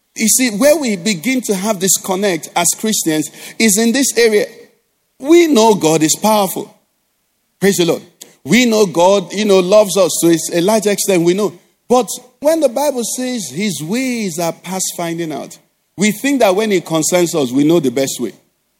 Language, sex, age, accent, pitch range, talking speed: English, male, 50-69, Nigerian, 180-245 Hz, 190 wpm